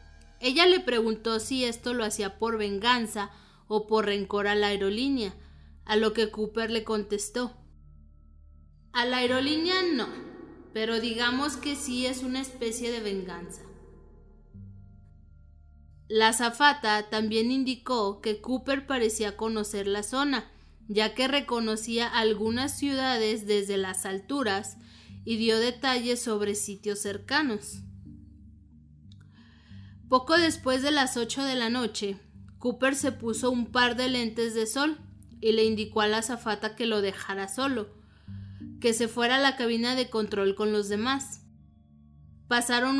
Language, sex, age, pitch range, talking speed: Spanish, female, 20-39, 200-245 Hz, 135 wpm